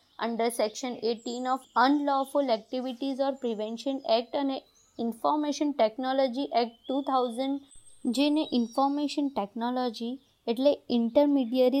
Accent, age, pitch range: native, 20-39, 225-275 Hz